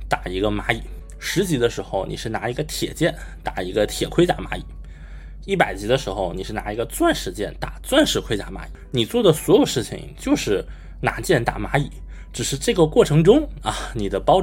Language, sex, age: Chinese, male, 20-39